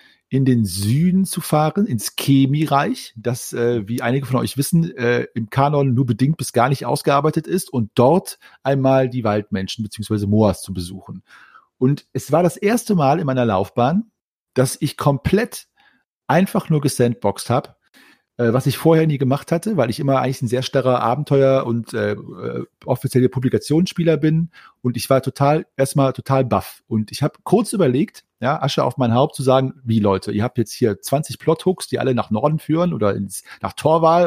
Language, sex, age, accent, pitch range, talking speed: German, male, 40-59, German, 120-150 Hz, 185 wpm